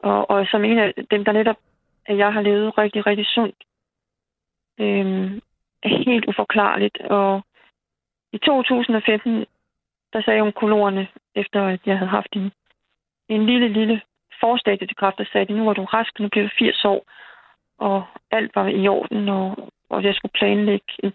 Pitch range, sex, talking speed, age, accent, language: 195-220 Hz, female, 165 wpm, 20-39, native, Danish